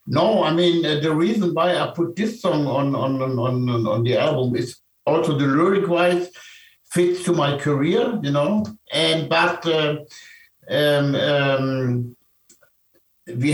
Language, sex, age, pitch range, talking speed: Portuguese, male, 60-79, 135-175 Hz, 155 wpm